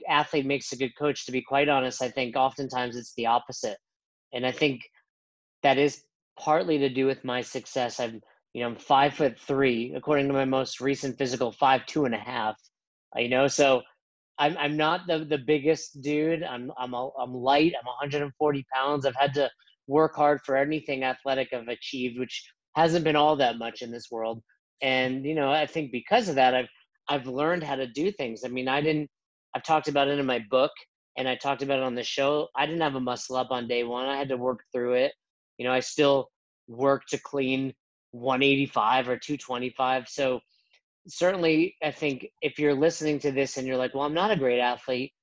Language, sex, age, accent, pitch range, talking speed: English, male, 30-49, American, 125-150 Hz, 210 wpm